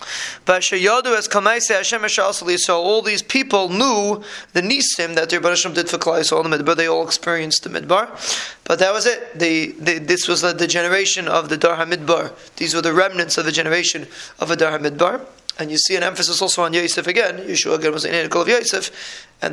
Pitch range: 170-200 Hz